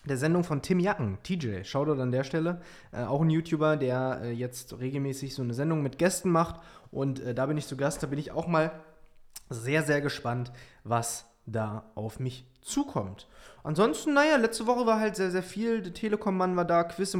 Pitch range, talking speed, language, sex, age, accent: 125-155 Hz, 200 wpm, German, male, 20-39, German